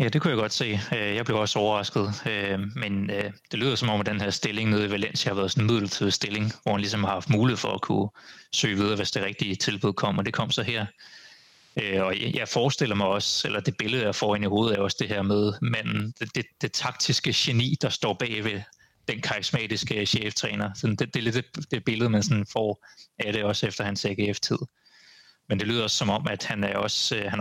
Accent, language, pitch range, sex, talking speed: native, Danish, 100-120 Hz, male, 225 wpm